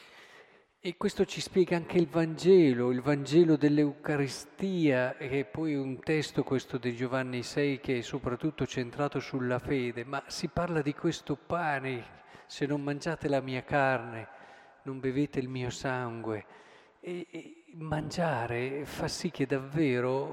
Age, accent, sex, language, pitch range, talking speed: 40-59, native, male, Italian, 135-175 Hz, 145 wpm